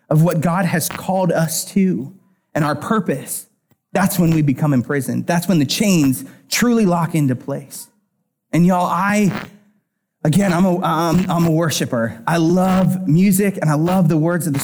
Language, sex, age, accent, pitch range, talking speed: English, male, 30-49, American, 155-200 Hz, 170 wpm